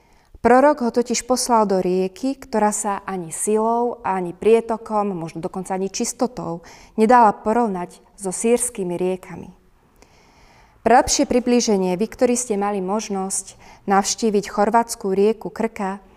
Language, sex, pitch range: Slovak, female, 185-220 Hz